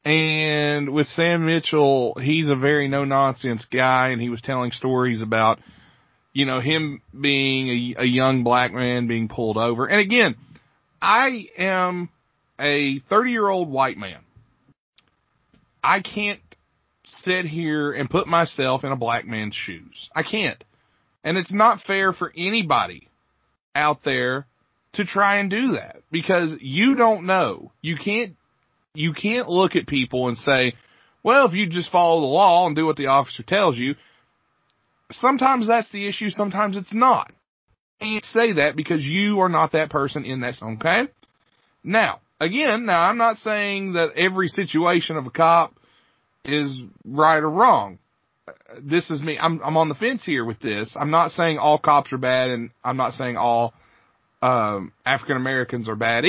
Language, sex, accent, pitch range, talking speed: English, male, American, 130-190 Hz, 165 wpm